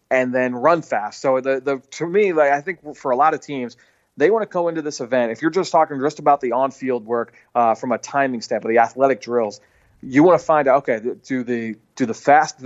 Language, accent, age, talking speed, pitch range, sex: English, American, 30-49, 245 wpm, 125-160 Hz, male